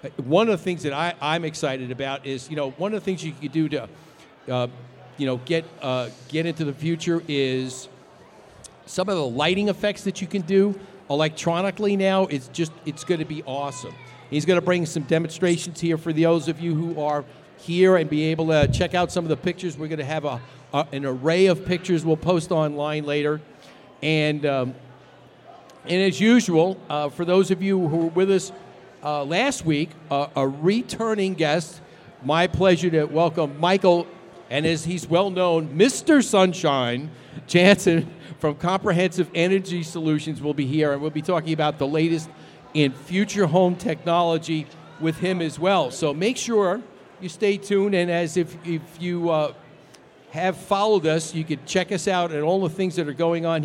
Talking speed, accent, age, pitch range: 190 wpm, American, 50-69, 150-180 Hz